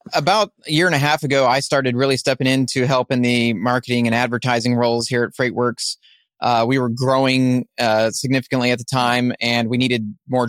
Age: 30-49